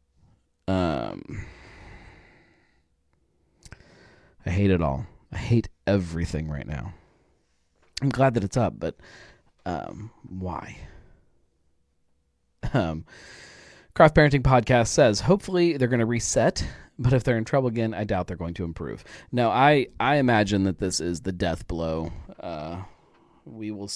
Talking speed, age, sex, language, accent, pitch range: 135 wpm, 30-49, male, English, American, 80-110 Hz